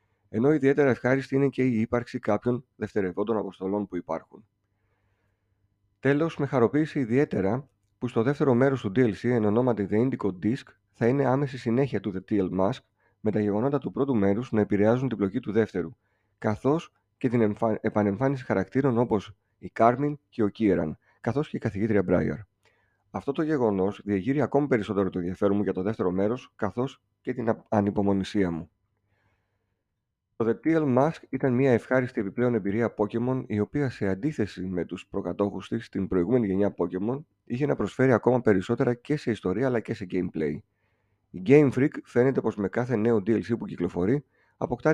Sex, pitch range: male, 100-125 Hz